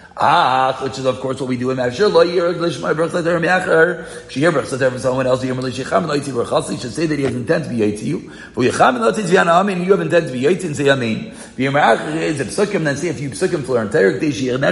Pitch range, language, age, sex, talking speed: 145-195 Hz, English, 40-59, male, 50 wpm